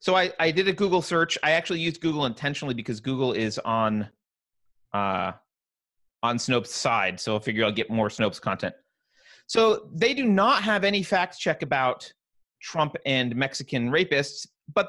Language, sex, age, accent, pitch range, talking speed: English, male, 30-49, American, 135-200 Hz, 170 wpm